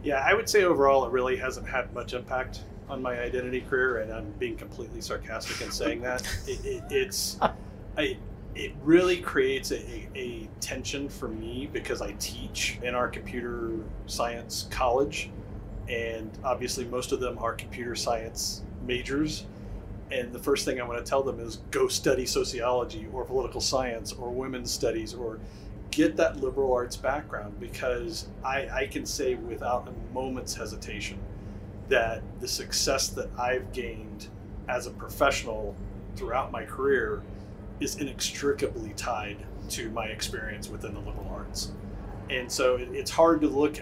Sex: male